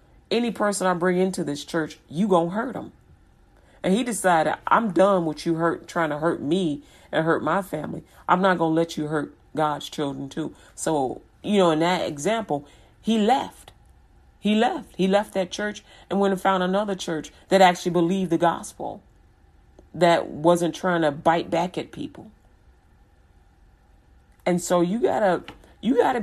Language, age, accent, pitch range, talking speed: English, 40-59, American, 145-190 Hz, 175 wpm